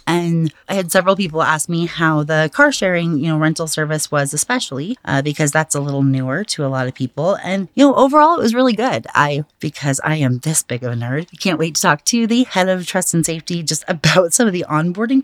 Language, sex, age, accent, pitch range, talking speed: English, female, 30-49, American, 135-200 Hz, 250 wpm